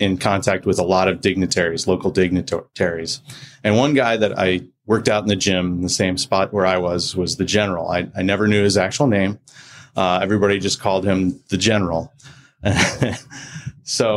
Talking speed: 185 wpm